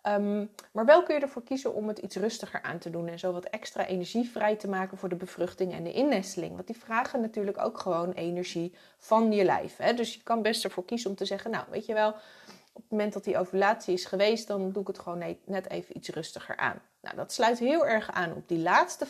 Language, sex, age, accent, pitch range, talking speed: Dutch, female, 30-49, Dutch, 180-230 Hz, 240 wpm